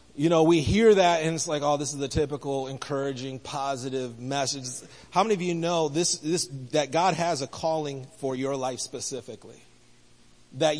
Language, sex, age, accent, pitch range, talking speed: English, male, 30-49, American, 135-175 Hz, 185 wpm